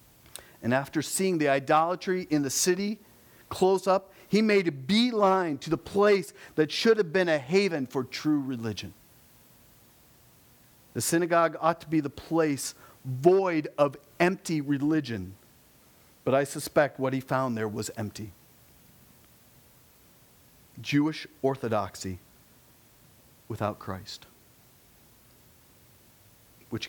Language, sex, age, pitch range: English, male, 40-59, 110-150 Hz